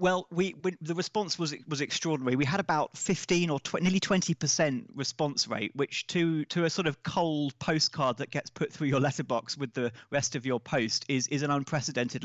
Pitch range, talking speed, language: 130-170 Hz, 205 wpm, English